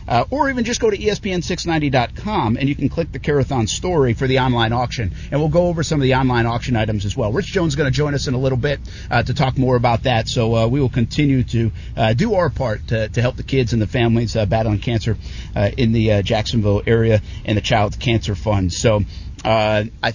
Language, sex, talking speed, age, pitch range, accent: English, male, 245 wpm, 50-69, 115-155 Hz, American